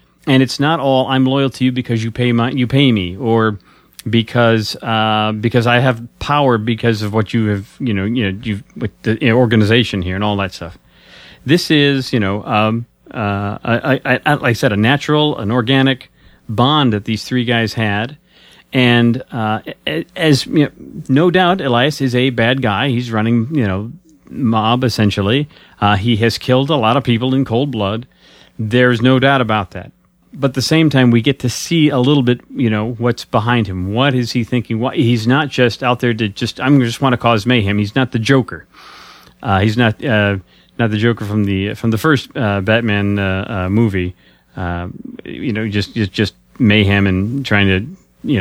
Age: 40-59